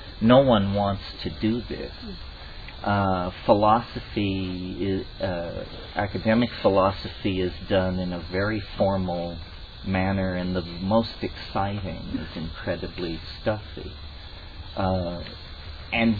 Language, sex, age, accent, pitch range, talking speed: English, male, 50-69, American, 85-105 Hz, 100 wpm